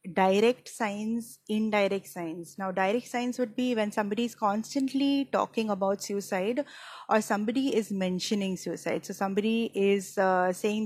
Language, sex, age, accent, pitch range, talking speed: English, female, 20-39, Indian, 195-220 Hz, 145 wpm